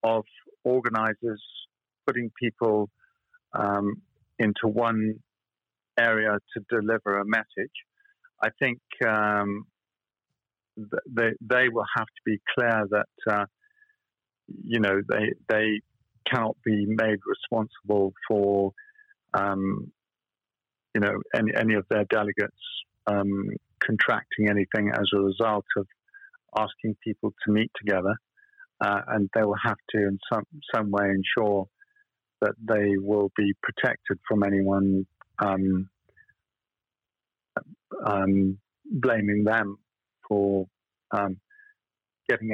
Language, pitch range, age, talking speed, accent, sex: English, 100-120 Hz, 50-69, 110 wpm, British, male